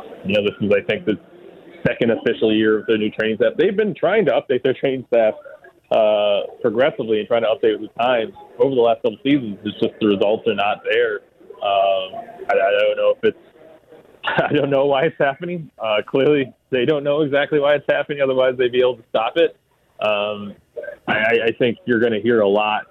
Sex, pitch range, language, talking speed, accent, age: male, 105-180 Hz, English, 215 wpm, American, 30-49